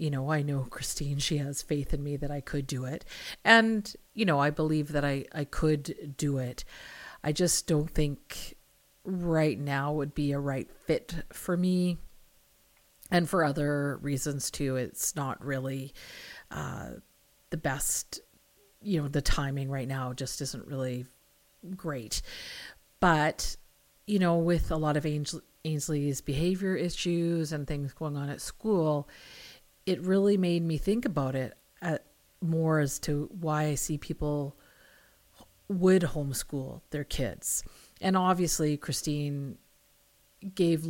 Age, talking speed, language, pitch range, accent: 50-69, 145 wpm, English, 140-170 Hz, American